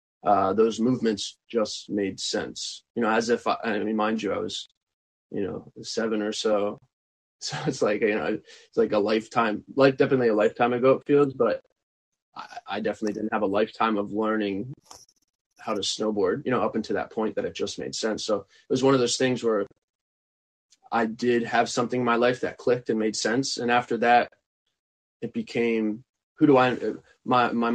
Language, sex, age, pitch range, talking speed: English, male, 20-39, 105-130 Hz, 200 wpm